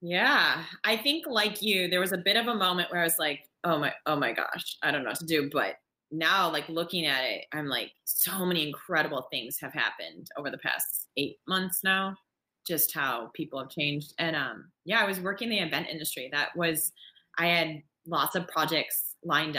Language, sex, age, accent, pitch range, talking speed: English, female, 20-39, American, 145-180 Hz, 215 wpm